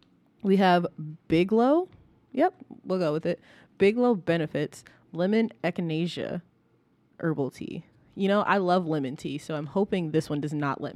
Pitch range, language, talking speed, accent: 150-190 Hz, English, 165 wpm, American